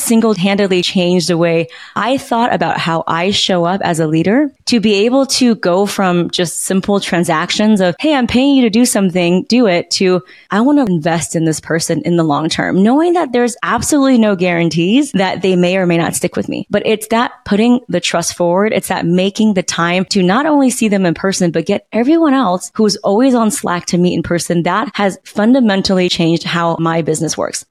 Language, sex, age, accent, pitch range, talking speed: English, female, 20-39, American, 175-220 Hz, 215 wpm